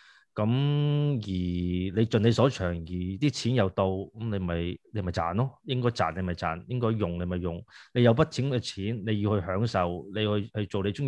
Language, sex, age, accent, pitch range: Chinese, male, 20-39, native, 95-115 Hz